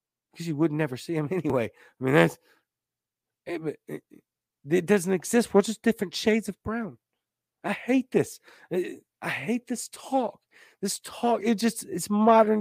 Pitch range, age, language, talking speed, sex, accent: 125-210 Hz, 40-59, English, 165 wpm, male, American